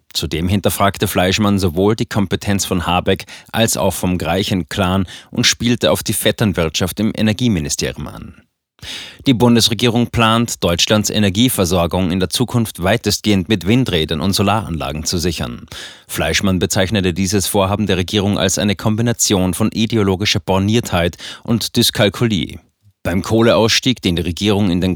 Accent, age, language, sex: German, 30-49, German, male